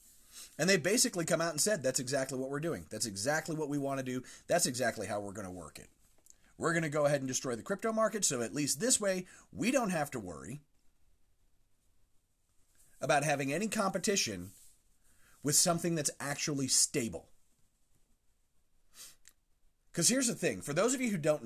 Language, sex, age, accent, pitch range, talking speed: English, male, 30-49, American, 130-190 Hz, 185 wpm